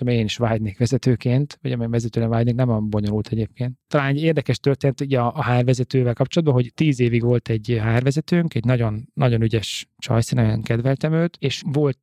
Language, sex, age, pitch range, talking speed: Hungarian, male, 30-49, 115-140 Hz, 180 wpm